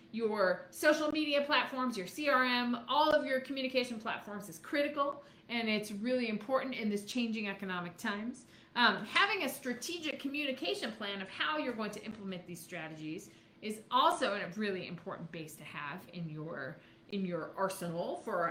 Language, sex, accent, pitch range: English, female, American, 200-265 Hz